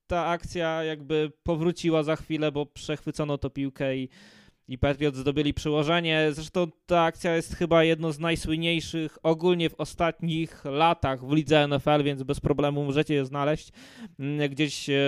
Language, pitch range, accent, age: Polish, 150-180 Hz, native, 20-39